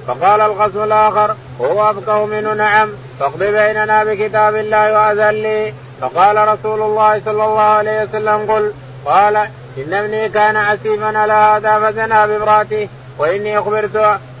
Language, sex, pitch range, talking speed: Arabic, male, 210-215 Hz, 110 wpm